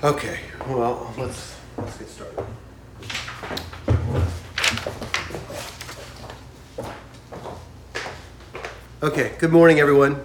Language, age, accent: English, 40-59, American